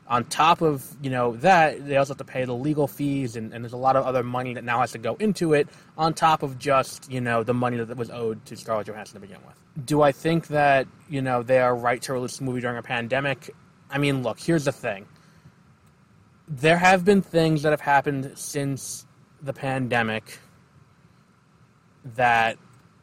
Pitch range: 120-150 Hz